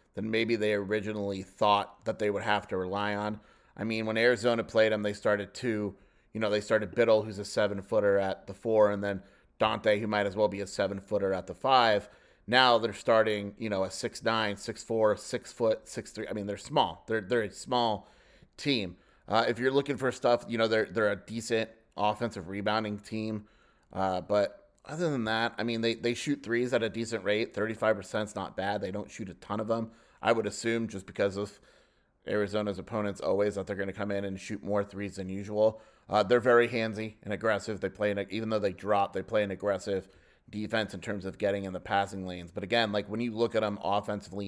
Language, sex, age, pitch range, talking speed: English, male, 30-49, 100-115 Hz, 220 wpm